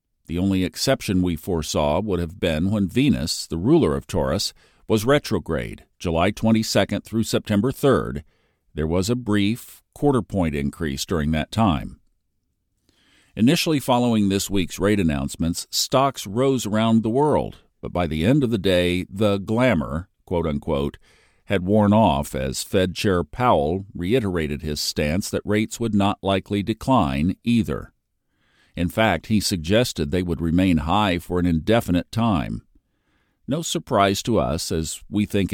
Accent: American